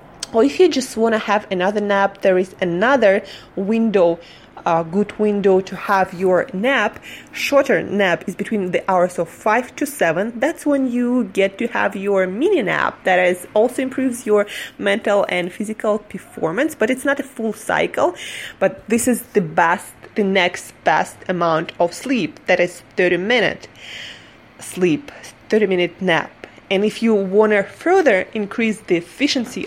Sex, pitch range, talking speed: female, 185-230 Hz, 160 wpm